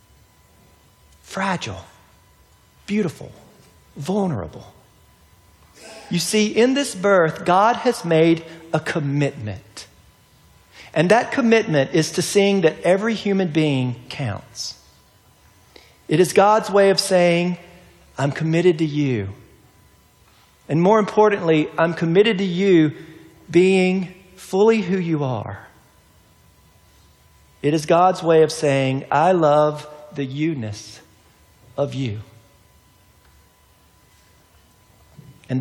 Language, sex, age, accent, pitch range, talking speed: English, male, 50-69, American, 115-185 Hz, 100 wpm